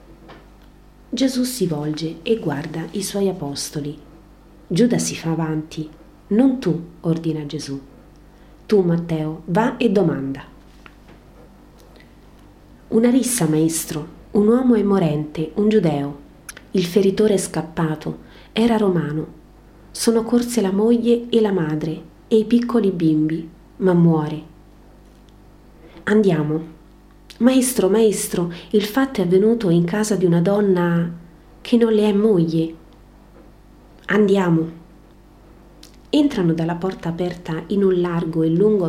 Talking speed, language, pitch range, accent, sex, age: 115 wpm, Italian, 160-210 Hz, native, female, 30-49